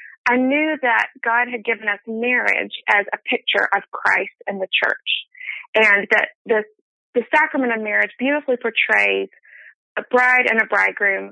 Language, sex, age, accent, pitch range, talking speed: English, female, 30-49, American, 225-280 Hz, 160 wpm